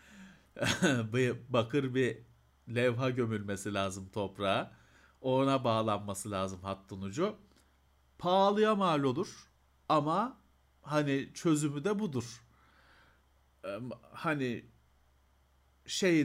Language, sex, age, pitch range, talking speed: Turkish, male, 50-69, 105-150 Hz, 80 wpm